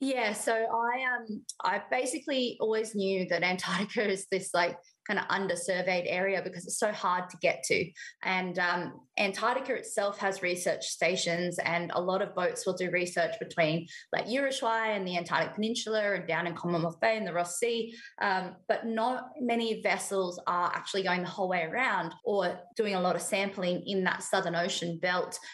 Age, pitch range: 20-39, 175-215 Hz